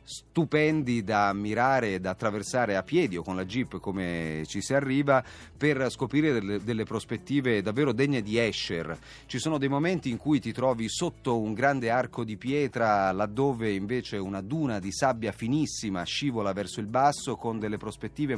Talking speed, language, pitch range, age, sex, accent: 175 wpm, Italian, 105-145 Hz, 30-49, male, native